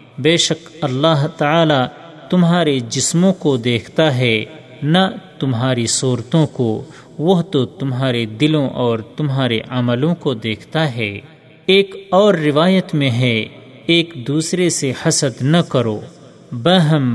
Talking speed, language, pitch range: 125 wpm, Urdu, 130-170 Hz